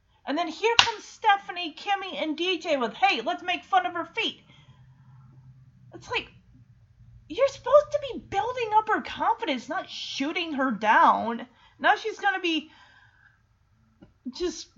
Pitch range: 230-340 Hz